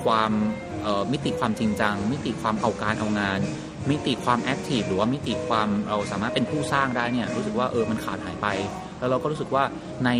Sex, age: male, 30-49